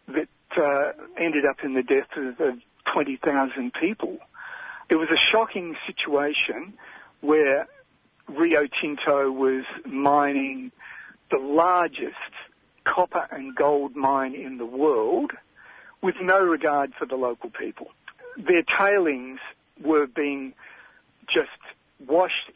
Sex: male